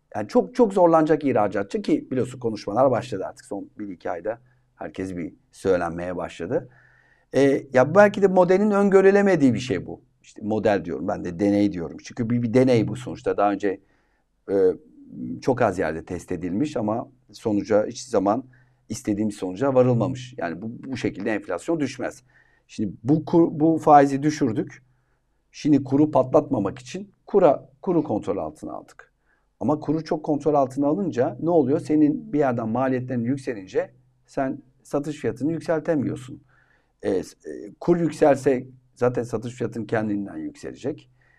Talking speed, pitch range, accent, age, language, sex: 145 wpm, 115-150 Hz, native, 50-69, Turkish, male